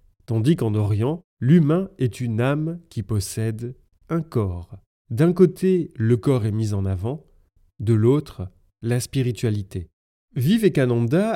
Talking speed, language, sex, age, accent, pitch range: 125 wpm, French, male, 30-49, French, 100-145 Hz